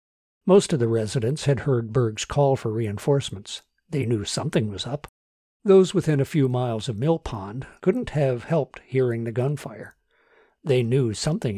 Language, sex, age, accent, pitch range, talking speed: English, male, 60-79, American, 115-155 Hz, 165 wpm